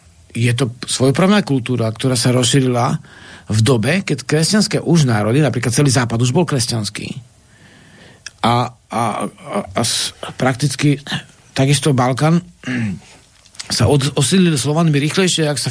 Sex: male